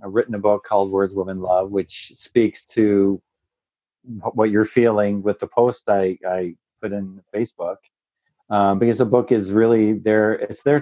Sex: male